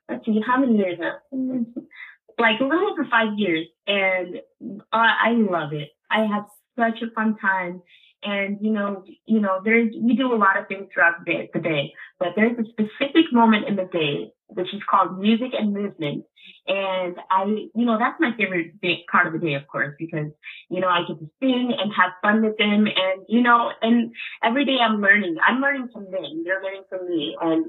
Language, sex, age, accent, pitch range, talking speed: English, female, 20-39, American, 180-230 Hz, 210 wpm